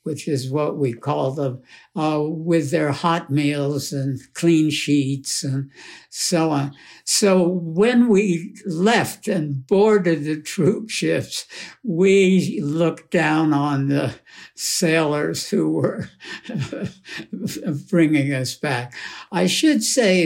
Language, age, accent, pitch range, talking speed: English, 60-79, American, 145-180 Hz, 120 wpm